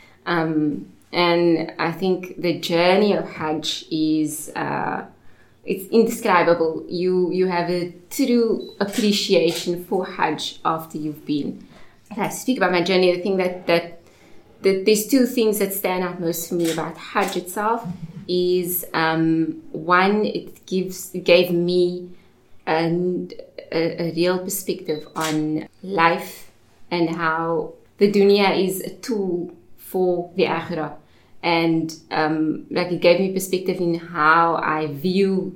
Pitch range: 160-185 Hz